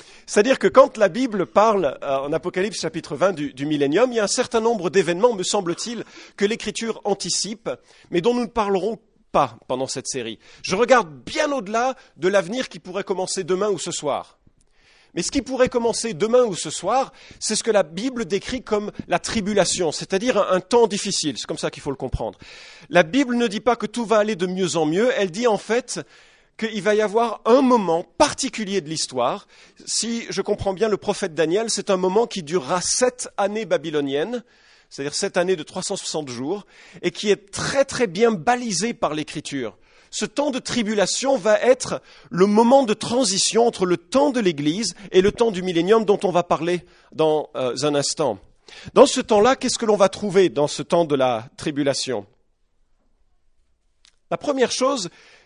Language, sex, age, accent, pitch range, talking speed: English, male, 40-59, French, 175-230 Hz, 195 wpm